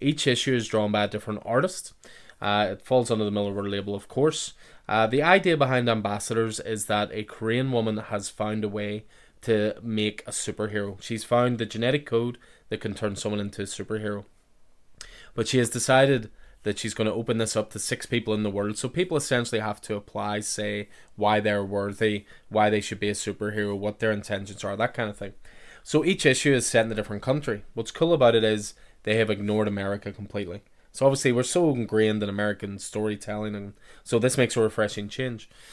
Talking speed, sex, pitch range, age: 205 wpm, male, 105-120 Hz, 20-39